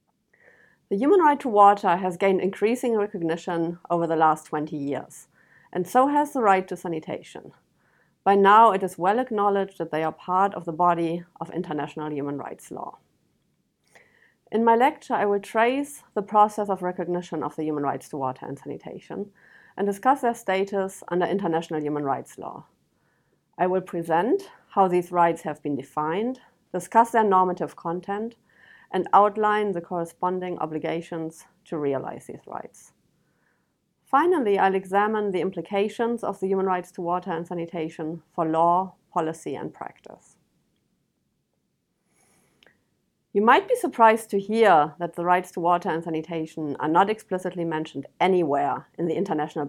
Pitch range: 165-205 Hz